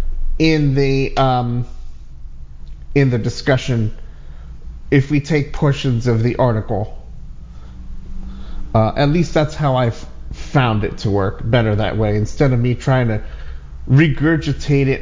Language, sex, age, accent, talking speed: English, male, 30-49, American, 130 wpm